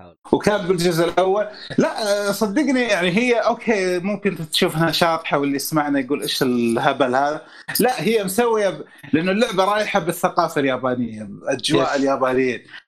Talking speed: 125 wpm